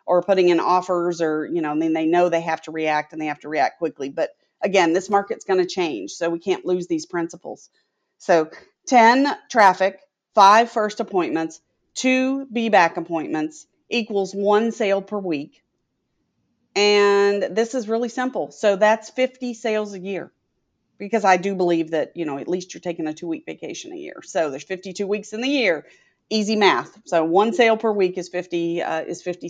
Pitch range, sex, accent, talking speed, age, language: 170-225 Hz, female, American, 195 wpm, 40-59, English